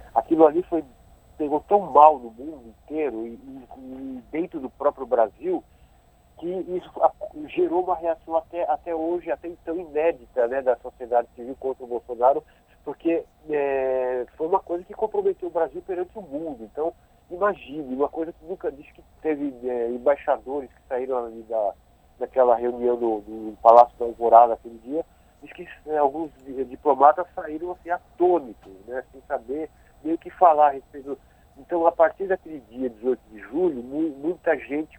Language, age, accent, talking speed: Portuguese, 50-69, Brazilian, 160 wpm